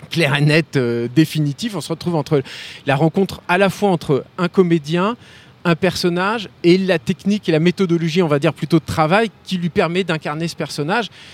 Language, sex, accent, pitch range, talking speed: French, male, French, 140-185 Hz, 195 wpm